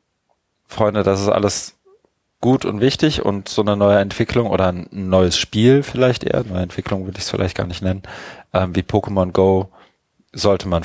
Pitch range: 90-105 Hz